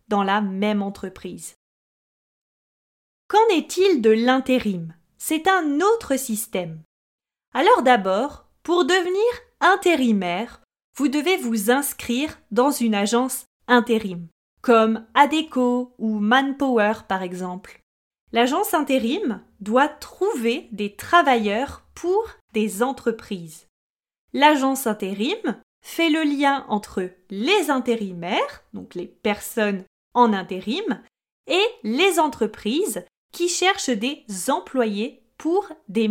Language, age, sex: French, 20-39, female